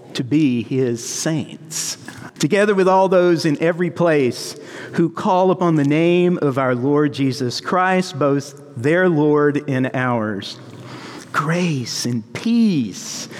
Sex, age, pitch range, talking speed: male, 50-69, 125-175 Hz, 130 wpm